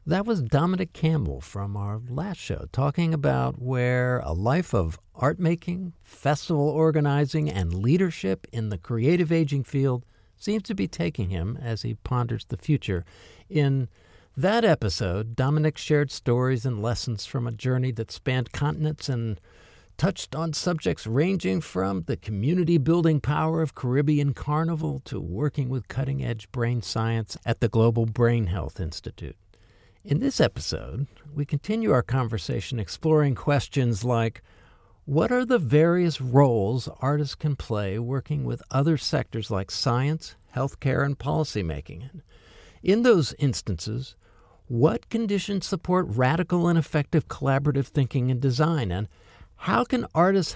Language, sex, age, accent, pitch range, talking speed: English, male, 60-79, American, 110-155 Hz, 140 wpm